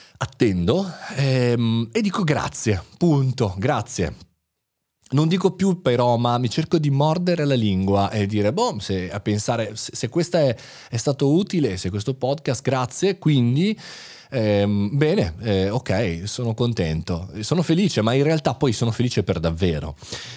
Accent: native